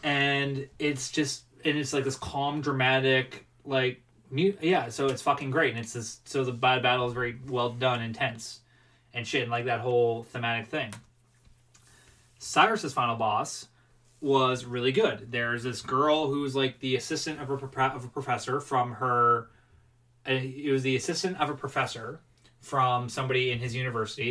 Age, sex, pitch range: 20-39, male, 120-140 Hz